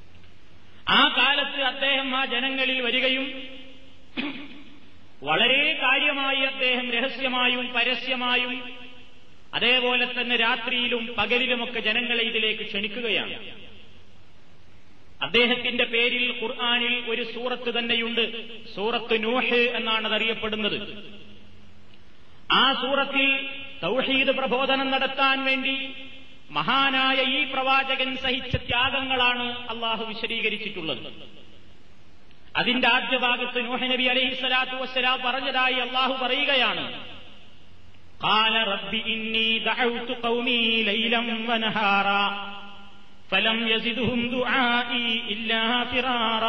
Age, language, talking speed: 30-49, Malayalam, 55 wpm